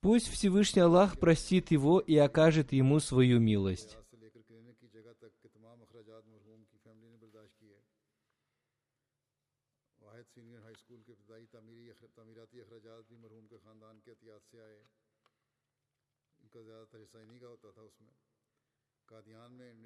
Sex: male